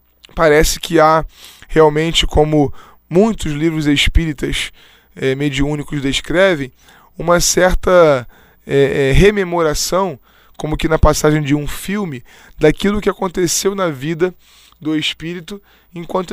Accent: Brazilian